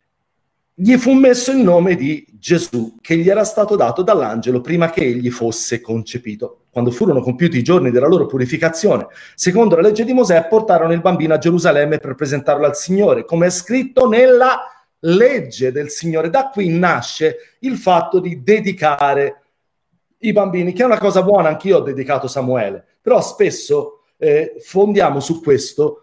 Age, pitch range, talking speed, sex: 40-59, 135-205 Hz, 165 wpm, male